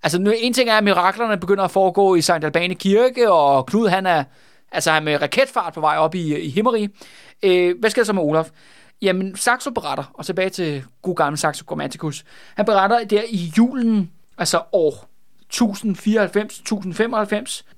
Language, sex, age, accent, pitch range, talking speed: Danish, male, 20-39, native, 165-205 Hz, 180 wpm